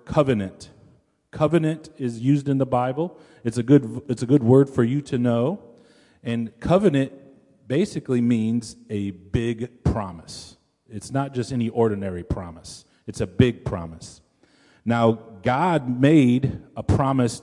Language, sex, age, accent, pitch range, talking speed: English, male, 40-59, American, 110-135 Hz, 140 wpm